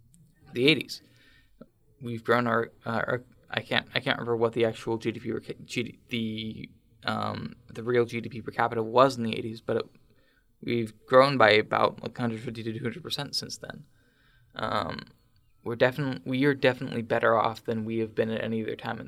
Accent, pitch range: American, 110-125 Hz